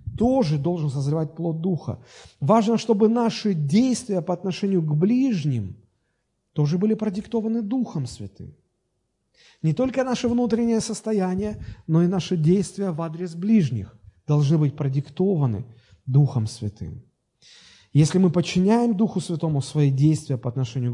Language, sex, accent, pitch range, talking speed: Russian, male, native, 125-190 Hz, 125 wpm